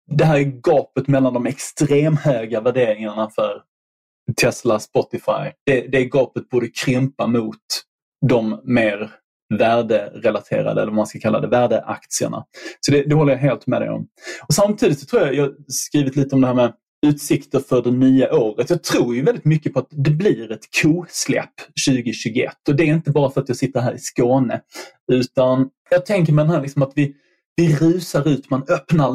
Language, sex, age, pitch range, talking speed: Swedish, male, 20-39, 125-155 Hz, 190 wpm